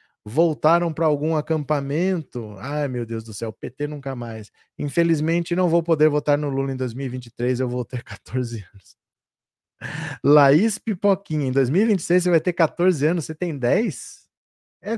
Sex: male